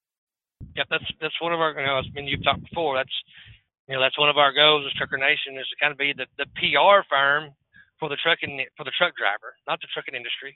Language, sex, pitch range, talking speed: English, male, 135-165 Hz, 260 wpm